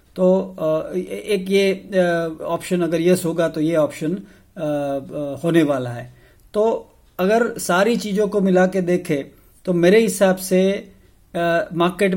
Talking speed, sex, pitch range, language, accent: 140 wpm, male, 150-180 Hz, English, Indian